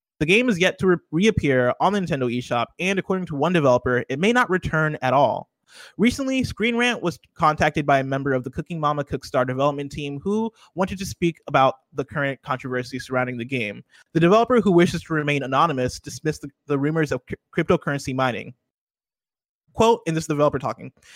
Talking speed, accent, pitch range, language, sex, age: 185 wpm, American, 140-175 Hz, English, male, 20-39